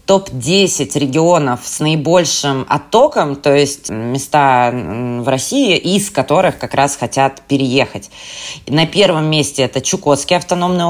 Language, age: Russian, 20-39